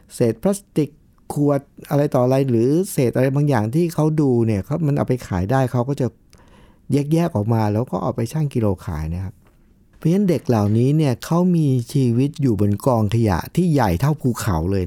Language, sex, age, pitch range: Thai, male, 60-79, 110-155 Hz